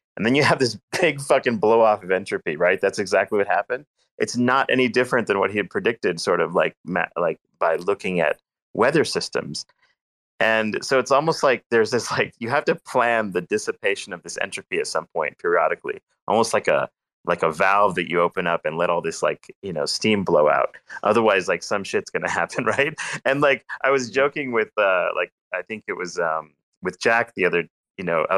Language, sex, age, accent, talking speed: English, male, 30-49, American, 220 wpm